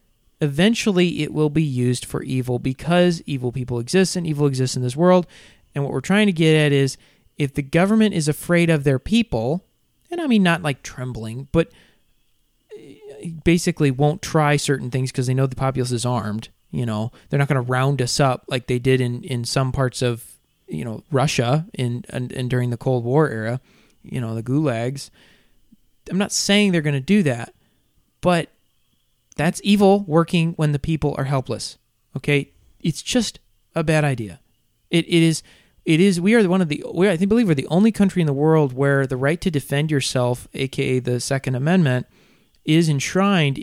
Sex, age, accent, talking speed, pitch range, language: male, 20-39, American, 190 wpm, 130-165 Hz, English